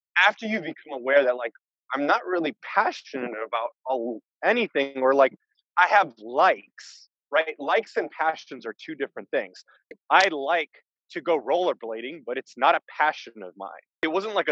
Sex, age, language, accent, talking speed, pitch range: male, 30-49, English, American, 165 wpm, 140-185 Hz